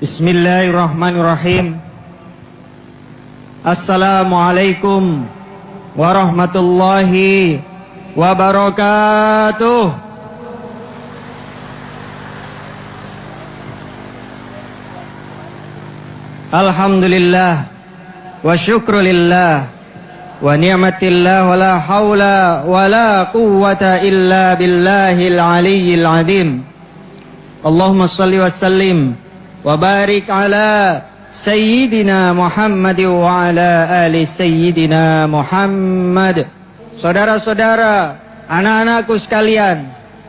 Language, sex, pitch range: English, male, 175-220 Hz